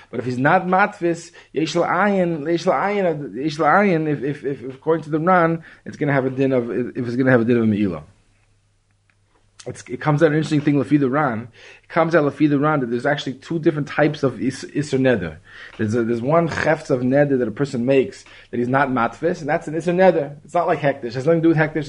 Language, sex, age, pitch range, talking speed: Hebrew, male, 20-39, 120-155 Hz, 205 wpm